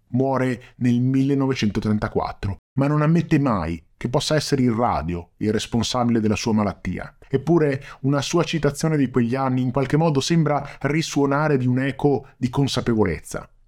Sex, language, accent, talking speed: male, Italian, native, 150 wpm